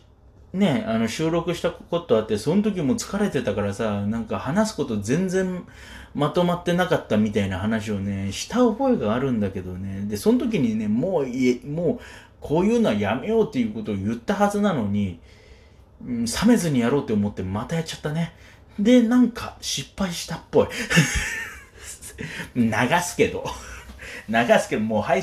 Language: Japanese